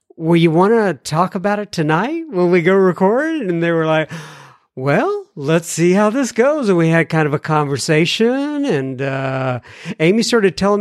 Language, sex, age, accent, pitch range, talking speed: English, male, 50-69, American, 145-185 Hz, 190 wpm